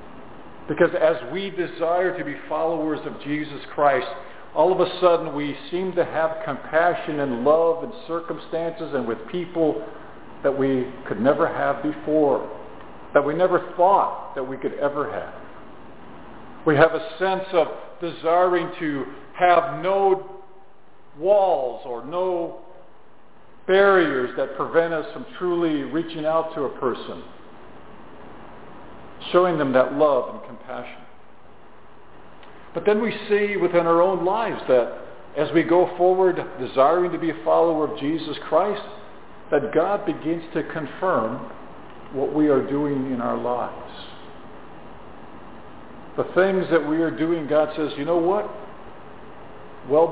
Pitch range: 150-180 Hz